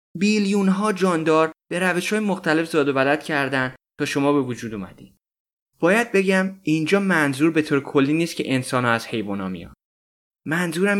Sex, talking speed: male, 160 wpm